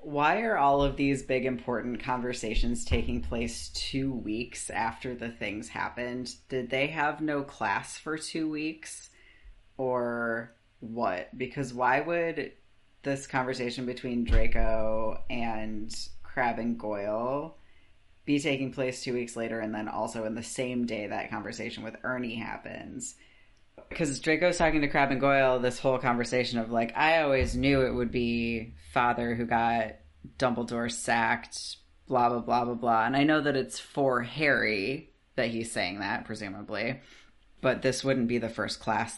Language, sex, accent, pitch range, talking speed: English, female, American, 110-135 Hz, 155 wpm